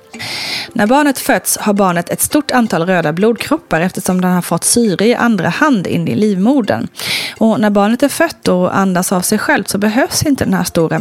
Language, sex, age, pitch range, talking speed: Swedish, female, 30-49, 185-245 Hz, 200 wpm